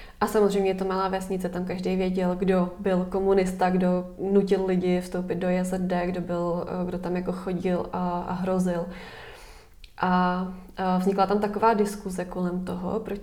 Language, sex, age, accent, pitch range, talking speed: Czech, female, 20-39, native, 185-200 Hz, 165 wpm